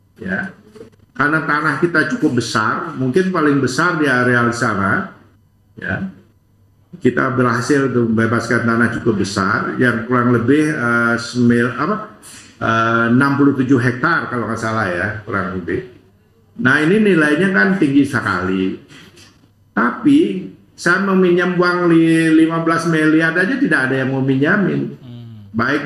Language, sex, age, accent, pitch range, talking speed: Indonesian, male, 50-69, native, 110-145 Hz, 125 wpm